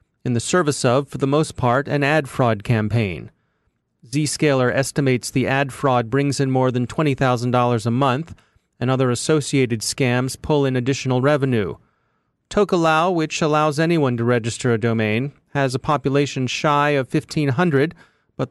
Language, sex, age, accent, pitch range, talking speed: English, male, 30-49, American, 130-155 Hz, 150 wpm